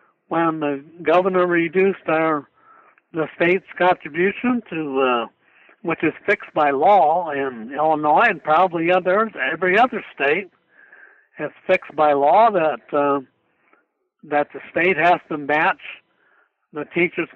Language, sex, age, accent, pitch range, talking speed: English, male, 60-79, American, 155-190 Hz, 130 wpm